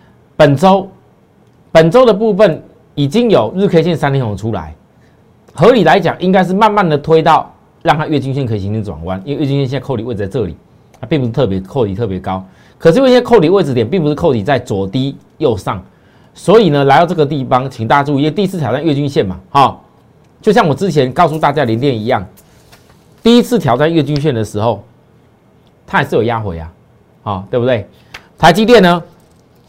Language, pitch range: Chinese, 115-175 Hz